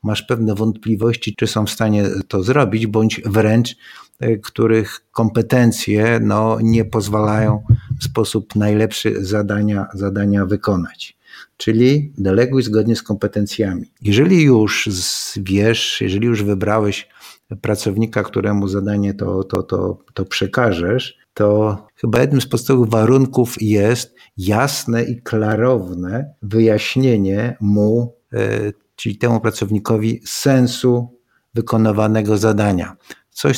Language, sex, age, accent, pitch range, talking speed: Polish, male, 50-69, native, 105-120 Hz, 110 wpm